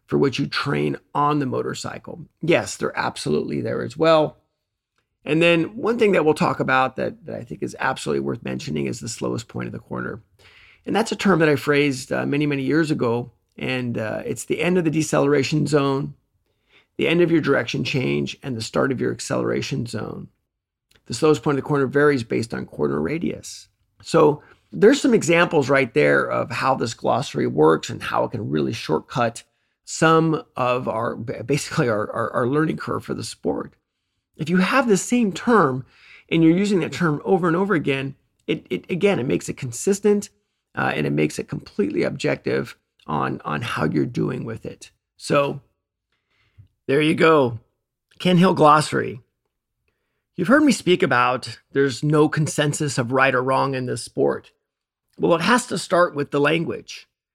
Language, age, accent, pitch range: English, 40-59, American, 120-165 Hz